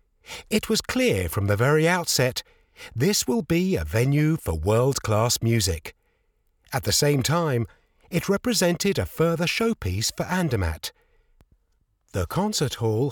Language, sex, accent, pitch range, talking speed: English, male, British, 105-175 Hz, 135 wpm